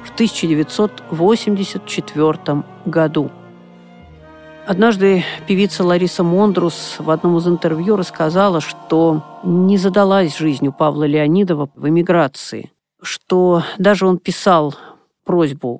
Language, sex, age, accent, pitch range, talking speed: Russian, female, 50-69, native, 150-195 Hz, 95 wpm